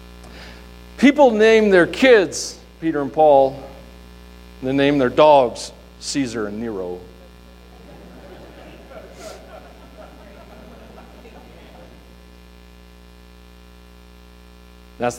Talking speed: 65 wpm